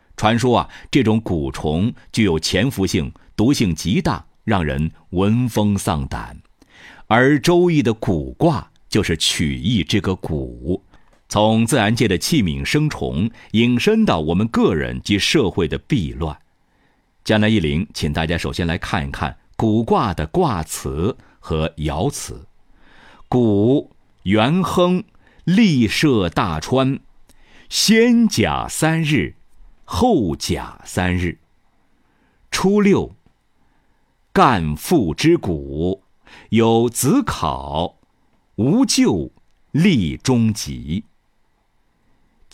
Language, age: Chinese, 50-69